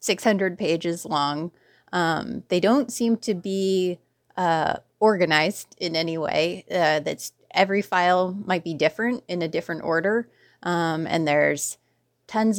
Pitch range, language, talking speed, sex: 160-195 Hz, English, 135 wpm, female